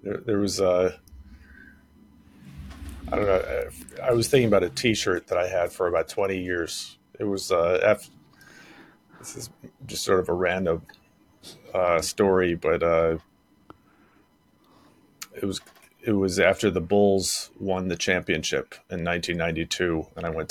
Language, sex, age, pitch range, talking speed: English, male, 30-49, 85-105 Hz, 135 wpm